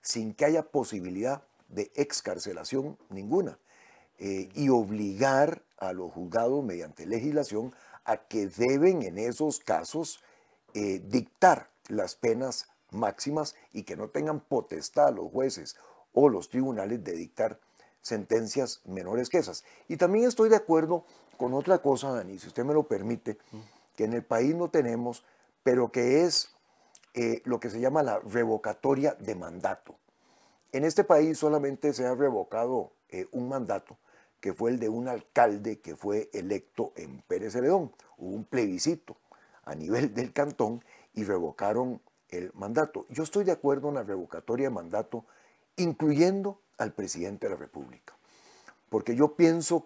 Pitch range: 115-150 Hz